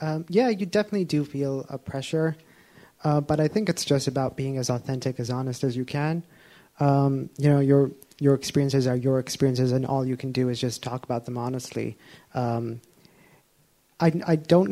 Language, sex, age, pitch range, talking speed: English, male, 30-49, 140-160 Hz, 190 wpm